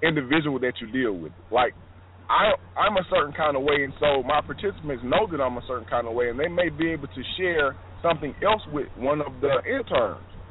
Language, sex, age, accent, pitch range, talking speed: English, male, 20-39, American, 105-165 Hz, 215 wpm